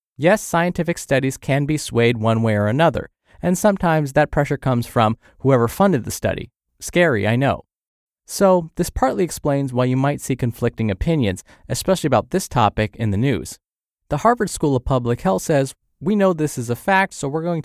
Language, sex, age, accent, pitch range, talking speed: English, male, 20-39, American, 110-155 Hz, 190 wpm